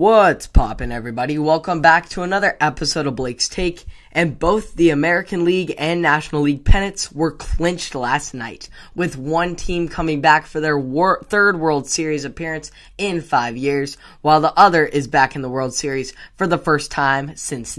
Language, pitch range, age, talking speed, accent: English, 145-170 Hz, 10-29, 175 wpm, American